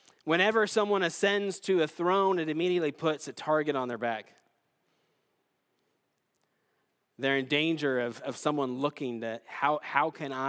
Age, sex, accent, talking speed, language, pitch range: 30-49, male, American, 145 wpm, English, 135-190 Hz